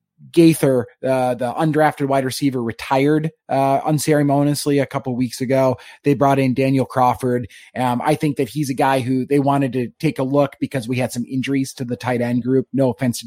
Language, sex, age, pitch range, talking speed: English, male, 30-49, 130-150 Hz, 210 wpm